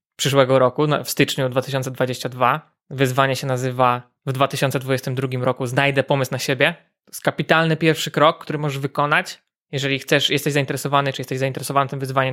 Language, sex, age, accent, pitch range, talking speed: Polish, male, 20-39, native, 135-155 Hz, 160 wpm